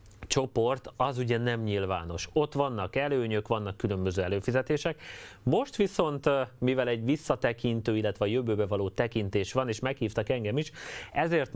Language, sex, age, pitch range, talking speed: Hungarian, male, 30-49, 105-125 Hz, 135 wpm